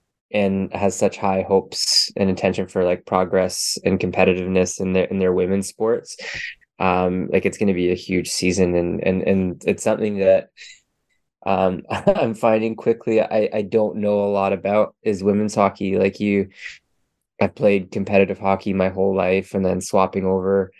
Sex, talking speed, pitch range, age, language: male, 175 wpm, 95-105 Hz, 20-39, English